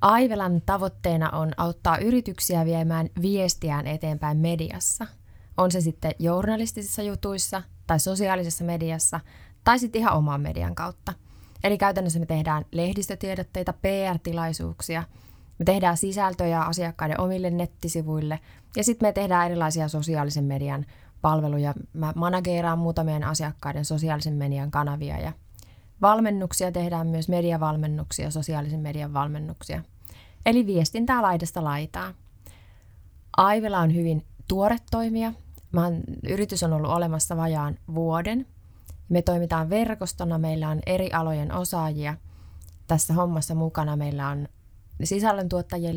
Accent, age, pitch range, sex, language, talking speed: native, 20-39, 150-185 Hz, female, Finnish, 110 wpm